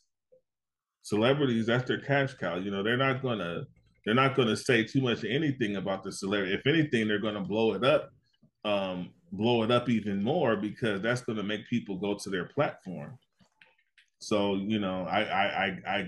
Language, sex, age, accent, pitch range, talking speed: English, male, 30-49, American, 105-130 Hz, 185 wpm